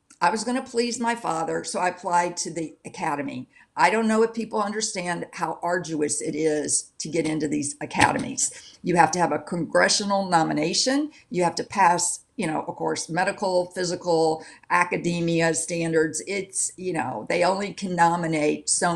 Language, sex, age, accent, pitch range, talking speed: English, female, 50-69, American, 155-190 Hz, 175 wpm